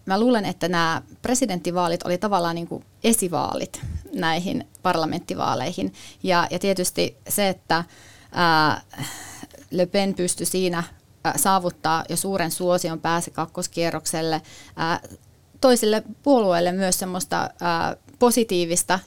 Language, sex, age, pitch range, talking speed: Finnish, female, 30-49, 170-190 Hz, 100 wpm